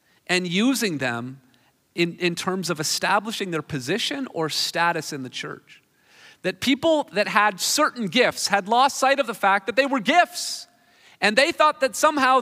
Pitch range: 180-265 Hz